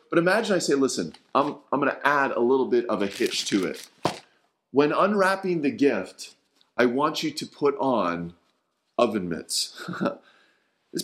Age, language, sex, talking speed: 30-49, English, male, 170 wpm